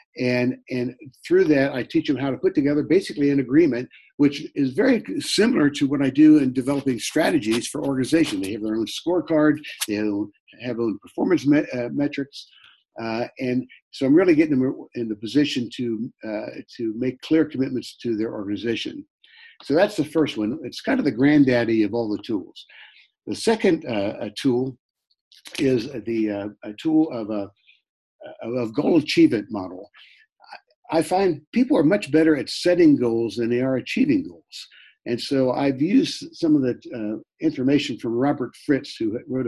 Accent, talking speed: American, 180 wpm